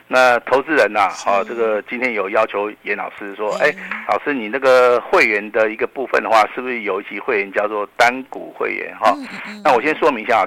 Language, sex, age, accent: Chinese, male, 50-69, native